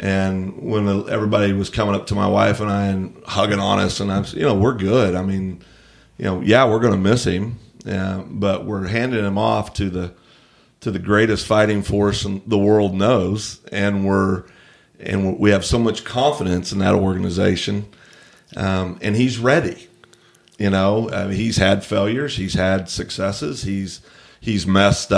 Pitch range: 95-110 Hz